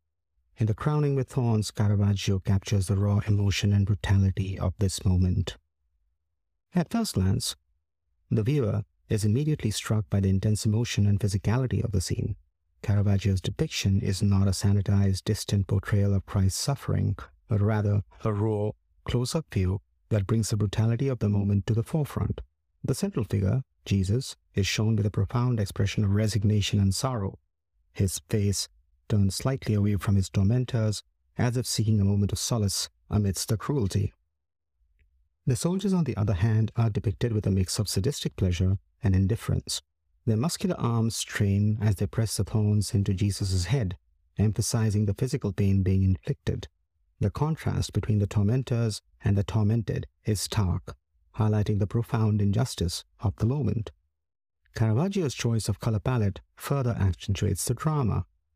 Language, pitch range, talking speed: English, 95-115 Hz, 155 wpm